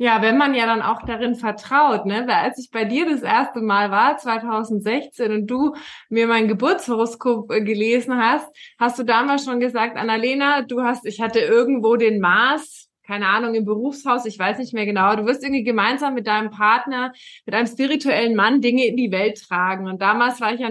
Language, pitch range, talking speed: German, 225-270 Hz, 200 wpm